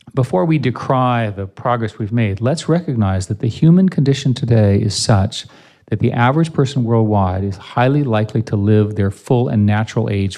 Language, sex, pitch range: English, male, 105-130 Hz